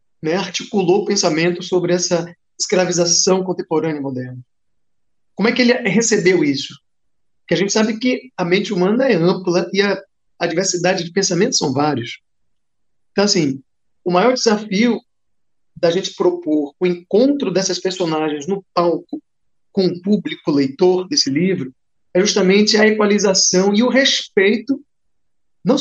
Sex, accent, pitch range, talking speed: male, Brazilian, 170-215 Hz, 145 wpm